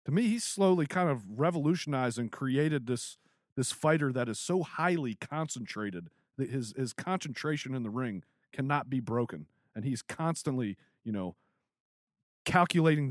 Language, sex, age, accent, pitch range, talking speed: English, male, 40-59, American, 115-155 Hz, 150 wpm